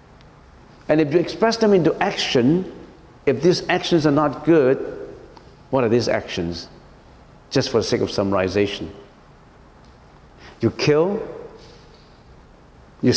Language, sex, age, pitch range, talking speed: English, male, 60-79, 125-175 Hz, 120 wpm